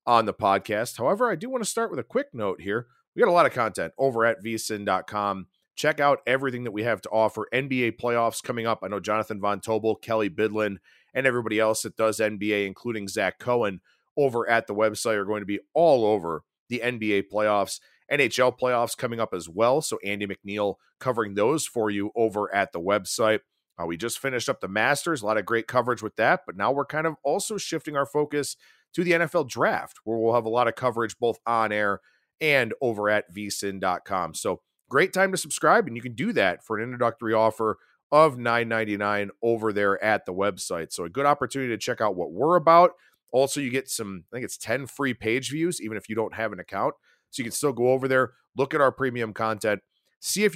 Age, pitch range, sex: 40-59, 105-145 Hz, male